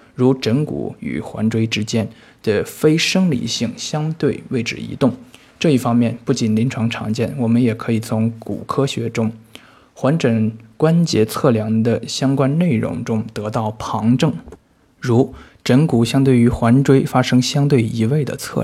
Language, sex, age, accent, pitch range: Chinese, male, 20-39, native, 110-135 Hz